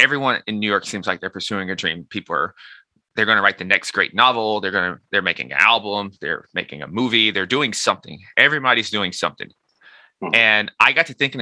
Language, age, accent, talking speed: English, 20-39, American, 220 wpm